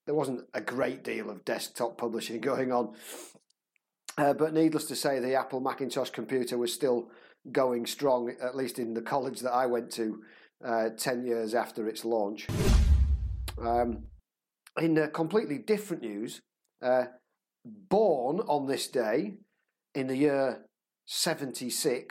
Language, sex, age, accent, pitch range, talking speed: English, male, 40-59, British, 120-145 Hz, 145 wpm